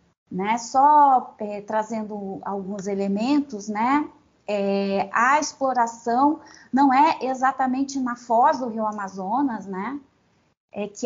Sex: female